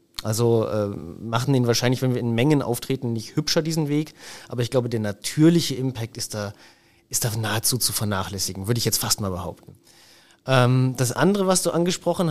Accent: German